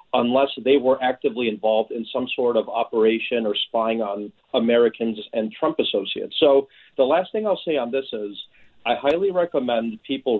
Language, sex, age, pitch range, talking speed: English, male, 40-59, 110-130 Hz, 175 wpm